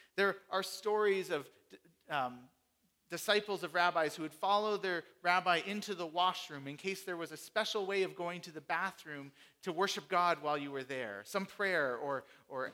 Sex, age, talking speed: male, 40-59, 185 wpm